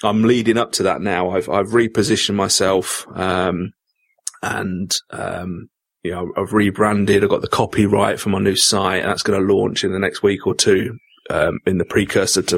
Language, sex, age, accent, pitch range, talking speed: English, male, 30-49, British, 100-115 Hz, 195 wpm